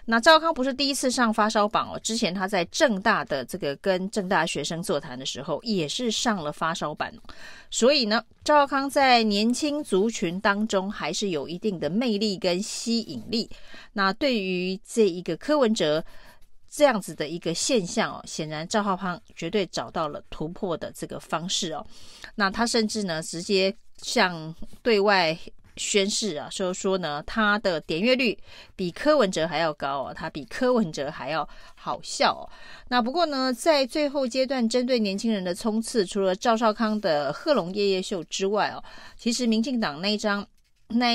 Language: Chinese